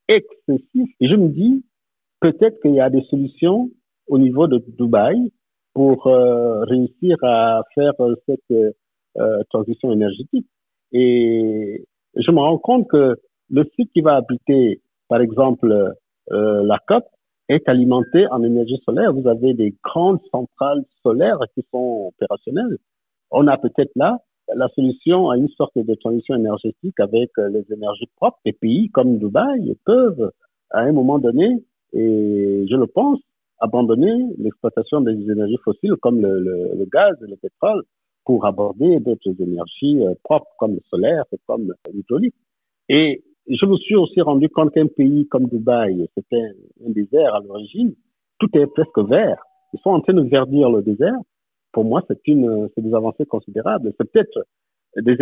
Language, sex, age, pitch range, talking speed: French, male, 50-69, 115-175 Hz, 155 wpm